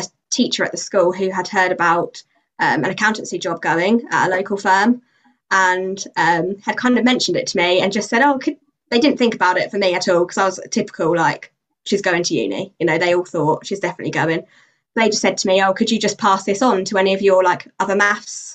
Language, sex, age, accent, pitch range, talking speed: English, female, 20-39, British, 190-230 Hz, 250 wpm